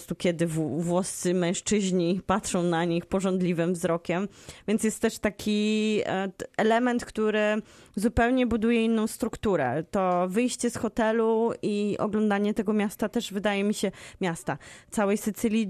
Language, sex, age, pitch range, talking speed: Polish, female, 20-39, 185-220 Hz, 125 wpm